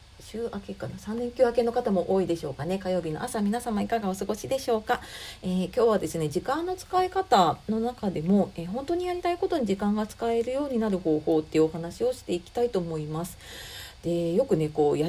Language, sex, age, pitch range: Japanese, female, 40-59, 170-245 Hz